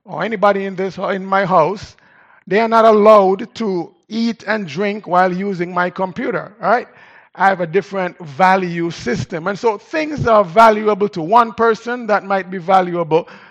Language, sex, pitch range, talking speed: English, male, 175-230 Hz, 180 wpm